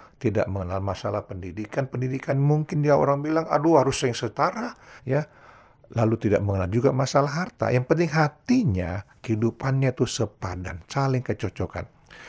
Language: Indonesian